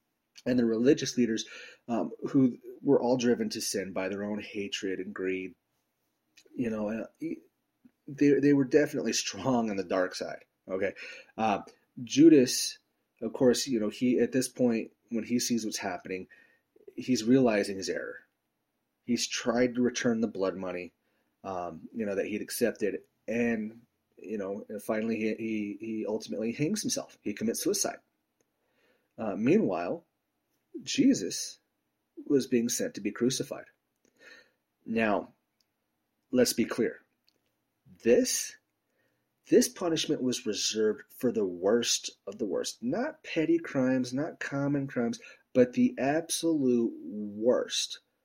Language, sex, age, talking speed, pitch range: English, male, 30-49, 135 wpm, 110-160 Hz